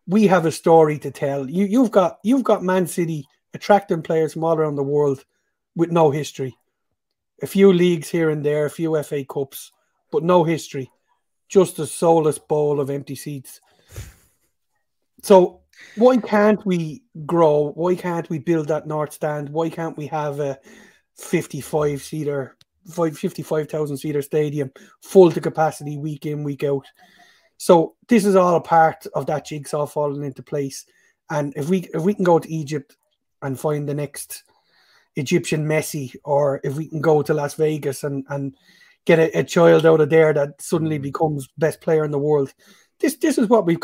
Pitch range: 145-175 Hz